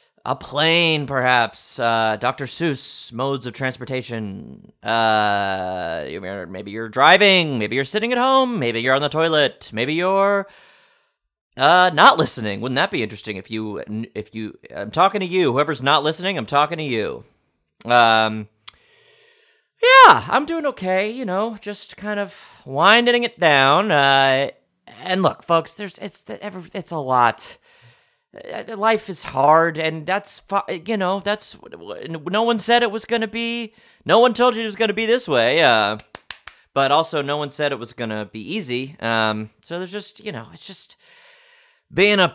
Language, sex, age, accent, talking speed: English, male, 30-49, American, 160 wpm